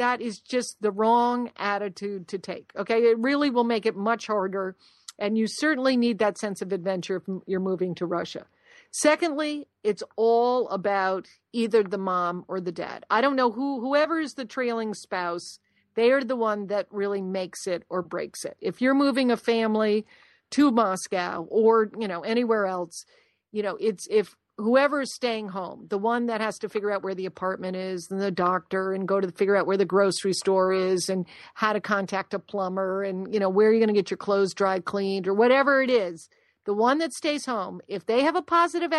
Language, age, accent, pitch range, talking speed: English, 50-69, American, 190-245 Hz, 210 wpm